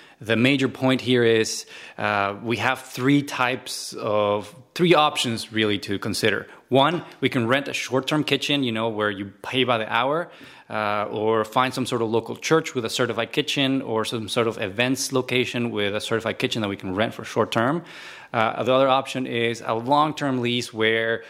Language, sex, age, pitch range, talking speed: English, male, 20-39, 110-135 Hz, 190 wpm